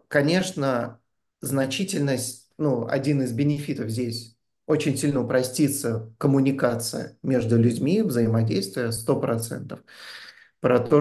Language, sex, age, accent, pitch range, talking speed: Russian, male, 30-49, native, 115-140 Hz, 100 wpm